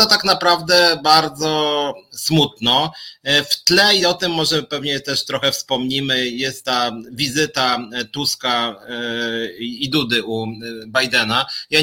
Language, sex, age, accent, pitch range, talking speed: Polish, male, 30-49, native, 120-155 Hz, 120 wpm